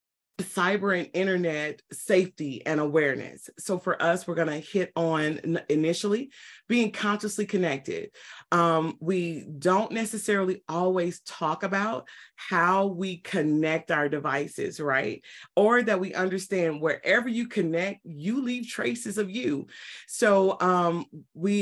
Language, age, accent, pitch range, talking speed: English, 30-49, American, 155-195 Hz, 130 wpm